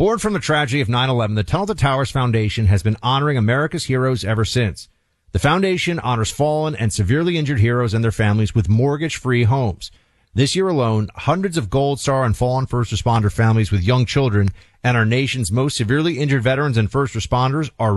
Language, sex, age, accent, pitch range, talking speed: English, male, 30-49, American, 105-135 Hz, 195 wpm